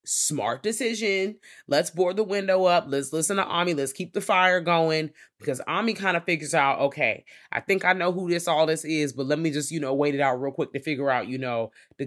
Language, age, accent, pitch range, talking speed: English, 20-39, American, 150-190 Hz, 245 wpm